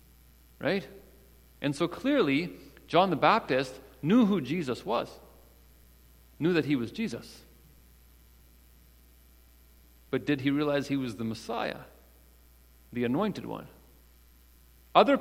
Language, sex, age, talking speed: English, male, 40-59, 110 wpm